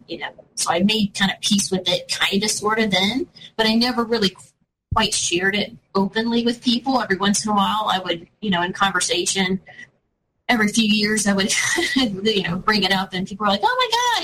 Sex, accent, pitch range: female, American, 180-215 Hz